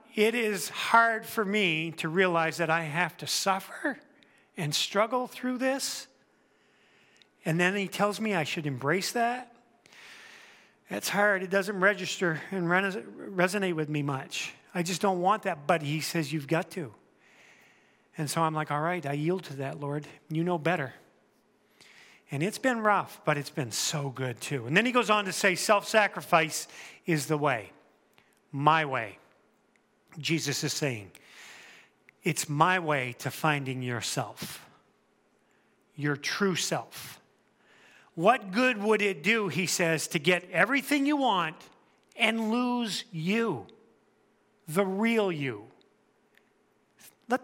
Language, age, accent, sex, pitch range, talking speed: English, 40-59, American, male, 150-210 Hz, 145 wpm